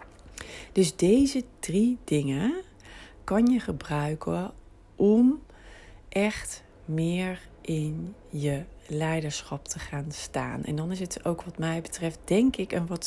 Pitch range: 145-190 Hz